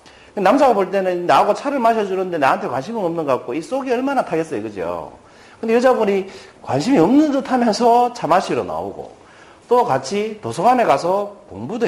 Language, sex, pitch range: Korean, male, 185-260 Hz